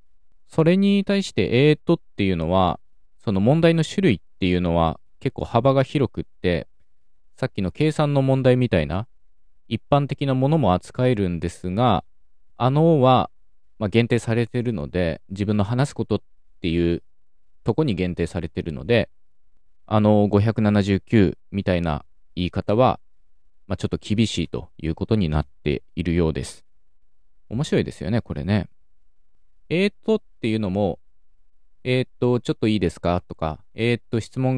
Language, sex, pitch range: Japanese, male, 85-125 Hz